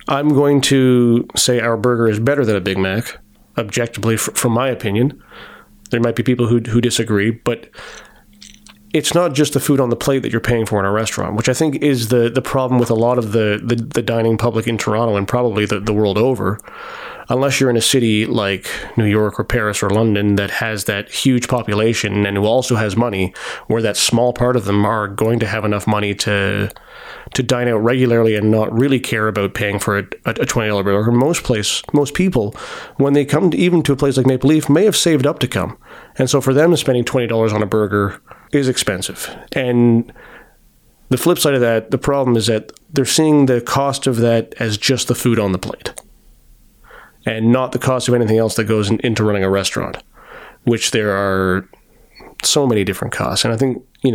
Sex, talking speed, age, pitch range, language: male, 215 wpm, 30-49, 110-130 Hz, English